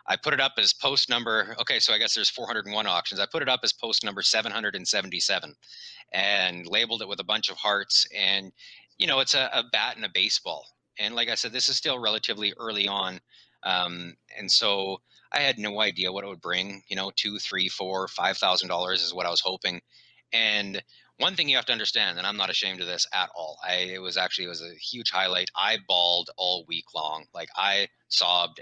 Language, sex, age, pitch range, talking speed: English, male, 30-49, 90-100 Hz, 220 wpm